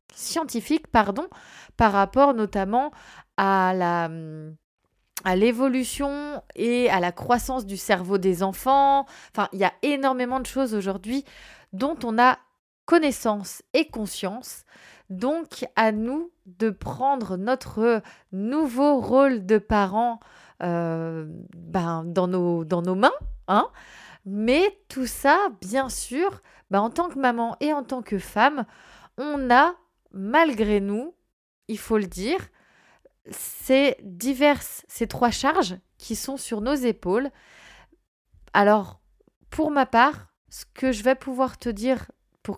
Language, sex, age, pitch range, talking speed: French, female, 20-39, 195-270 Hz, 130 wpm